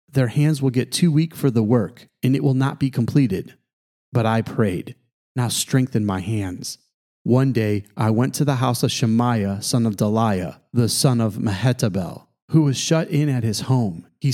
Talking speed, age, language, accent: 195 wpm, 30-49, English, American